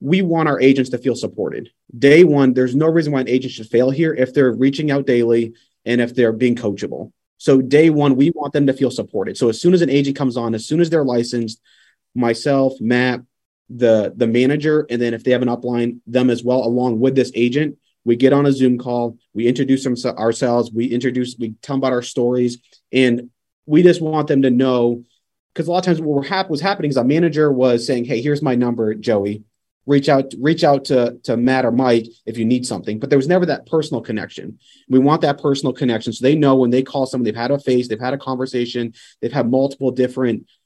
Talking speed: 230 wpm